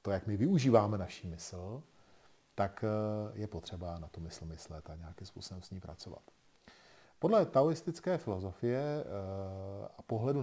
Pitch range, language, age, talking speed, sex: 90-110 Hz, Czech, 40-59, 140 wpm, male